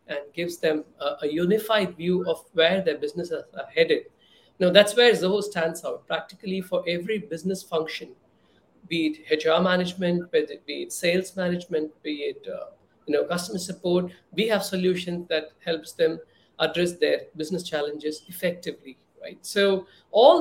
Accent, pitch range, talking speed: Indian, 165-215 Hz, 160 wpm